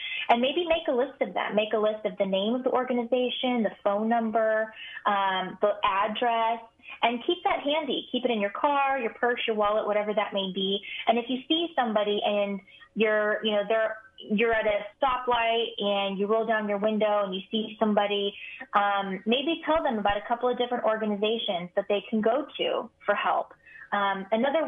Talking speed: 200 wpm